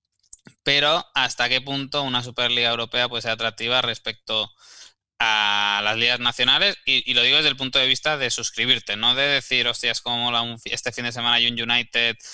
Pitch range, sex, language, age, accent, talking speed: 110-130 Hz, male, Spanish, 20-39, Spanish, 200 wpm